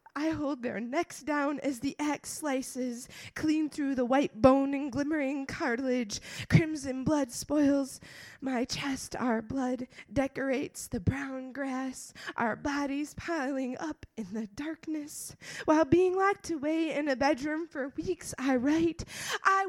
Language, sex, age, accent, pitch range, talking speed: English, female, 20-39, American, 260-320 Hz, 145 wpm